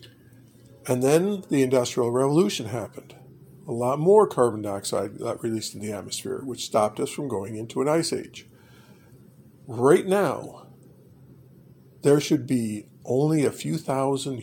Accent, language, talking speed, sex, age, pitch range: American, English, 140 wpm, male, 50-69, 120-140 Hz